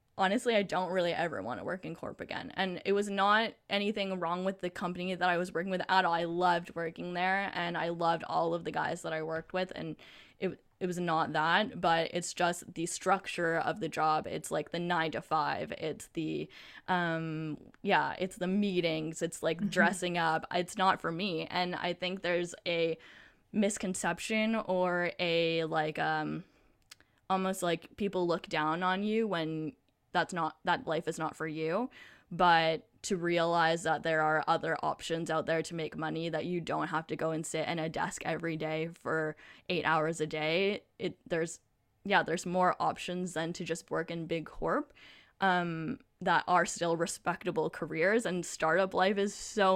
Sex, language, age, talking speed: female, English, 10-29, 190 wpm